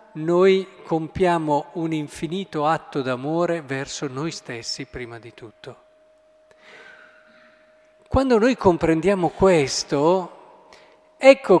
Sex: male